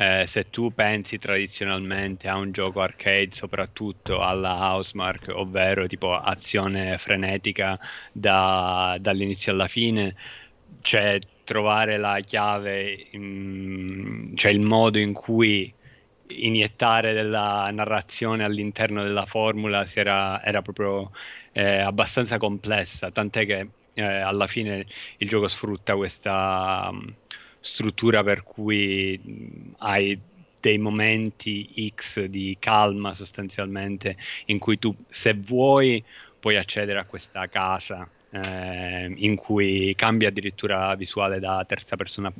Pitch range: 95-110 Hz